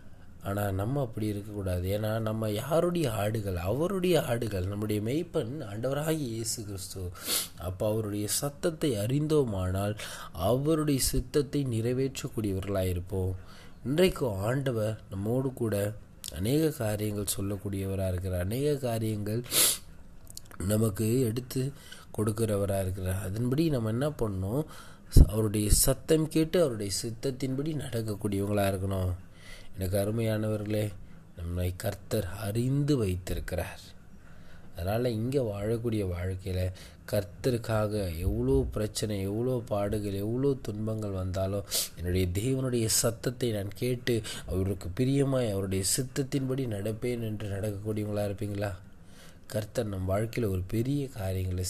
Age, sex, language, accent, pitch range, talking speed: 20-39, male, Tamil, native, 95-120 Hz, 100 wpm